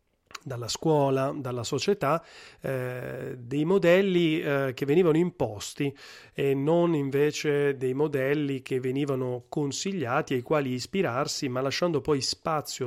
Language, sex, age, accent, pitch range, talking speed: Italian, male, 30-49, native, 130-155 Hz, 120 wpm